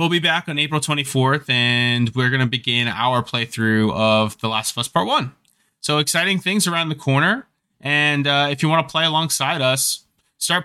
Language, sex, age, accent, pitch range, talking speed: English, male, 20-39, American, 110-145 Hz, 205 wpm